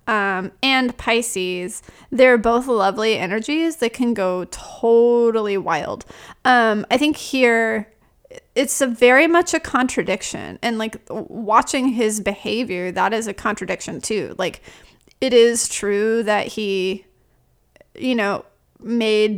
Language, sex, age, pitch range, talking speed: English, female, 30-49, 215-270 Hz, 125 wpm